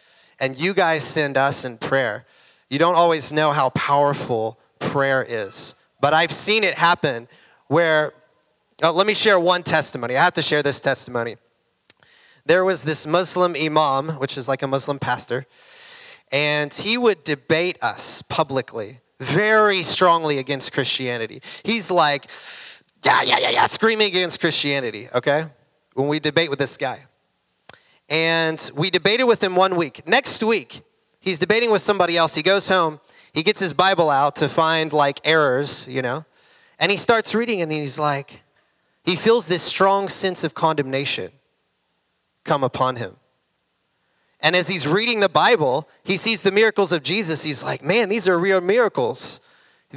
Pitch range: 140-190 Hz